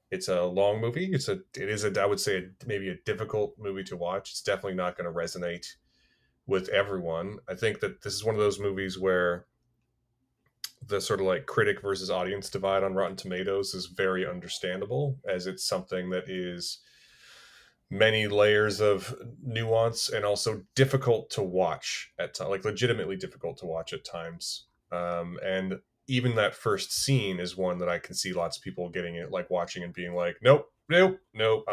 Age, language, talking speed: 30-49, English, 185 wpm